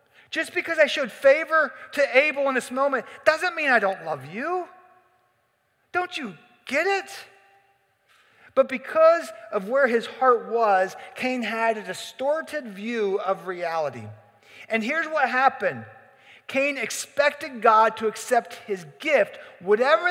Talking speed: 135 wpm